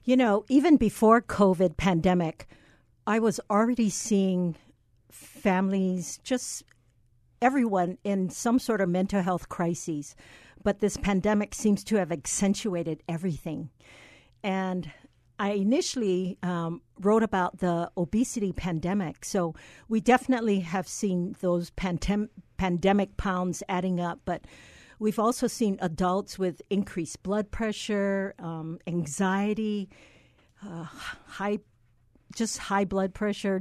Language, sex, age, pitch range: English, female, 50-69, 175-210 Hz